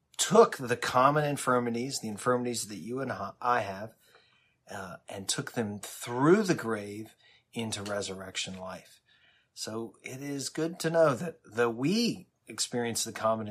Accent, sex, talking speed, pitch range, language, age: American, male, 145 wpm, 105-130 Hz, English, 30-49